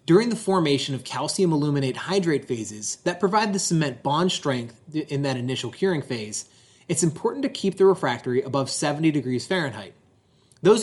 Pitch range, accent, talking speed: 130-180 Hz, American, 165 wpm